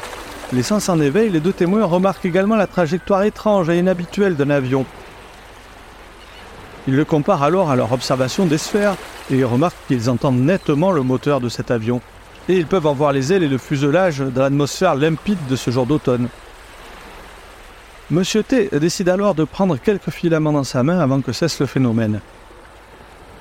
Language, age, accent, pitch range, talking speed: French, 40-59, French, 130-185 Hz, 170 wpm